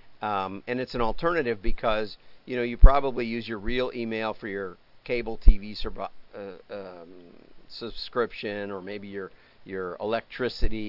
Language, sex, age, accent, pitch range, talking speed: English, male, 50-69, American, 95-115 Hz, 150 wpm